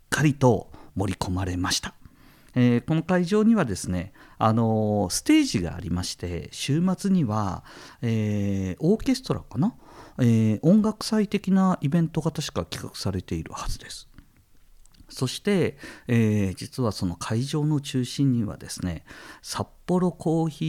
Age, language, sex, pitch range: 50-69, Japanese, male, 95-160 Hz